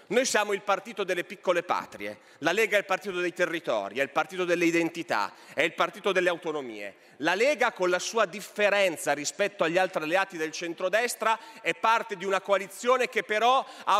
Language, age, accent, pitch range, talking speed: Italian, 30-49, native, 185-240 Hz, 190 wpm